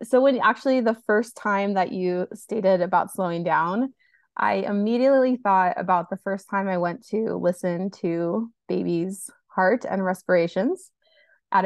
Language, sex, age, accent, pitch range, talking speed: English, female, 20-39, American, 185-230 Hz, 150 wpm